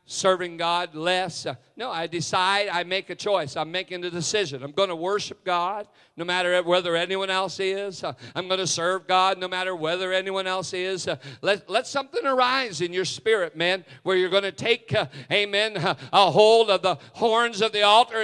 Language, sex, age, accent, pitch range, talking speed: English, male, 50-69, American, 150-200 Hz, 195 wpm